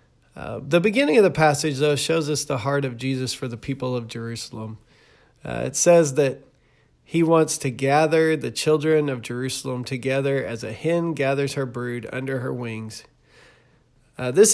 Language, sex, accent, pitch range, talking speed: English, male, American, 130-160 Hz, 175 wpm